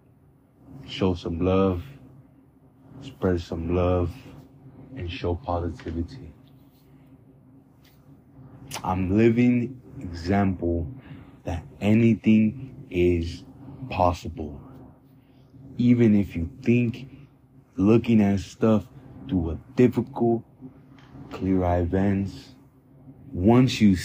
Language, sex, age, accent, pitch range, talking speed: English, male, 20-39, American, 95-135 Hz, 75 wpm